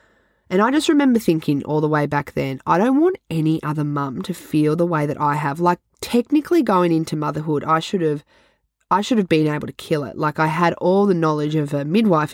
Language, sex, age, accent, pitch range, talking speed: English, female, 20-39, Australian, 150-175 Hz, 235 wpm